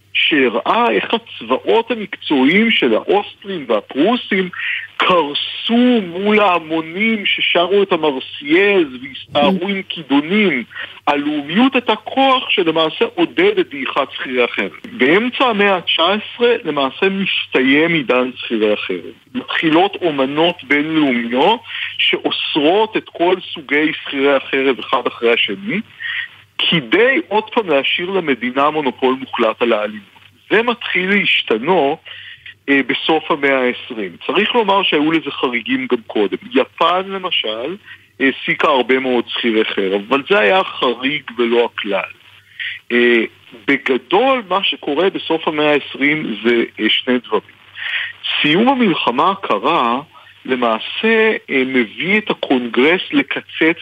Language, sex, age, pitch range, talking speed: Hebrew, male, 60-79, 130-215 Hz, 115 wpm